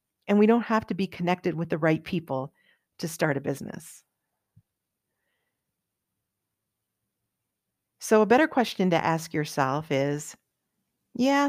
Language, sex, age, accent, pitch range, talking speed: English, female, 40-59, American, 160-205 Hz, 125 wpm